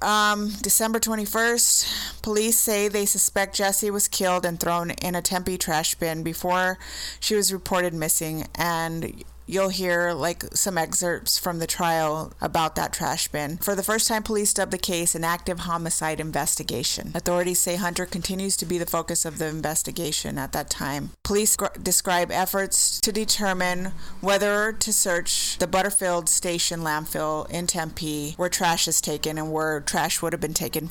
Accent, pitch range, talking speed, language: American, 165-195 Hz, 165 wpm, English